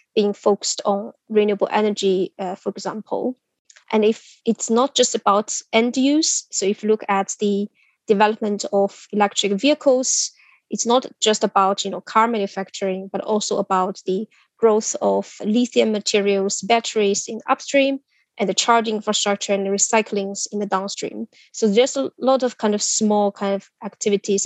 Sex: female